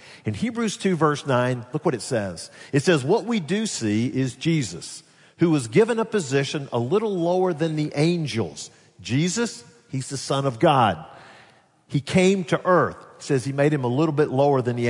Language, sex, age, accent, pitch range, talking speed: English, male, 50-69, American, 125-165 Hz, 195 wpm